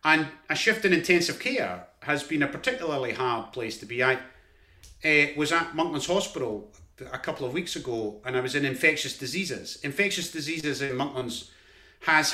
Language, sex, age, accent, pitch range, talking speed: English, male, 30-49, British, 135-180 Hz, 175 wpm